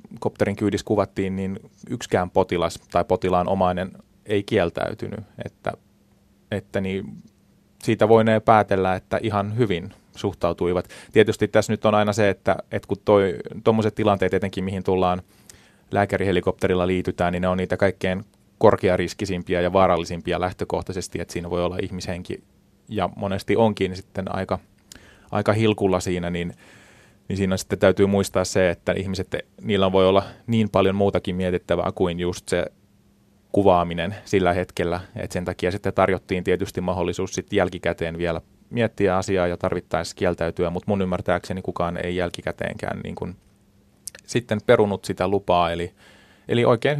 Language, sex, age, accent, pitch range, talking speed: Finnish, male, 30-49, native, 90-100 Hz, 145 wpm